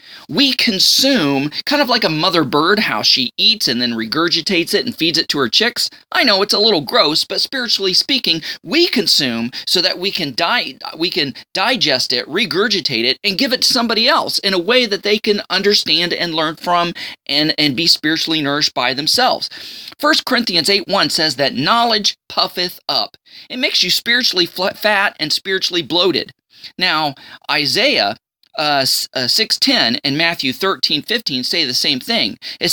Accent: American